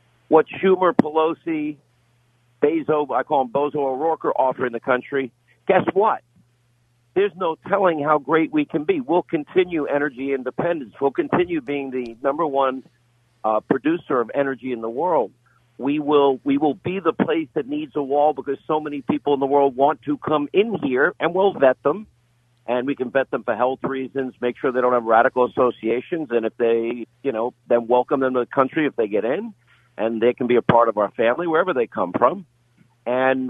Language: English